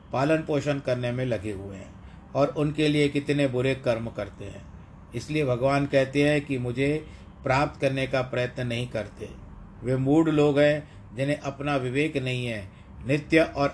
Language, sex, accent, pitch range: Hindi, male, native, 100-135 Hz